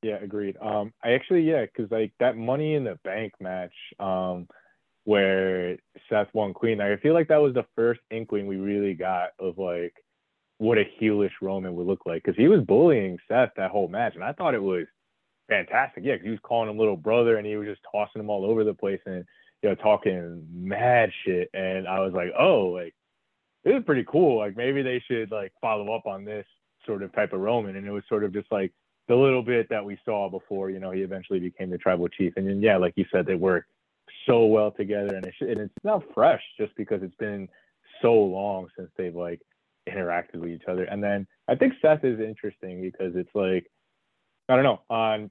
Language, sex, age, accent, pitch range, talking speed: English, male, 20-39, American, 95-110 Hz, 220 wpm